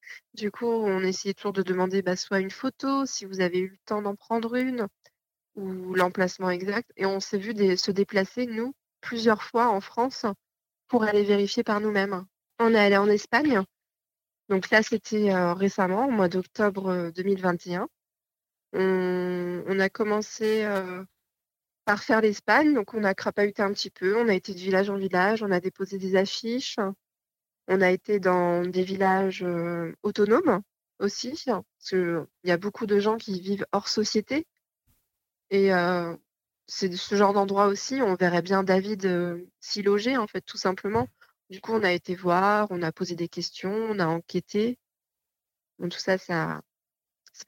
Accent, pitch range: French, 185-215 Hz